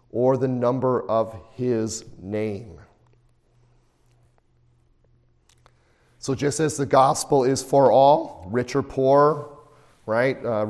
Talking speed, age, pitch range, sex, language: 105 wpm, 40-59, 125-145 Hz, male, English